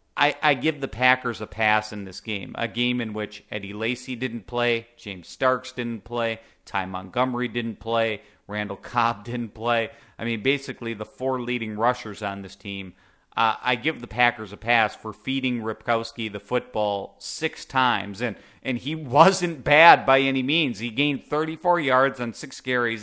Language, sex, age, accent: English, male, 40-59, American